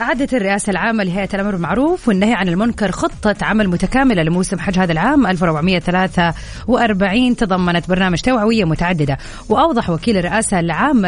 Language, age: Arabic, 30-49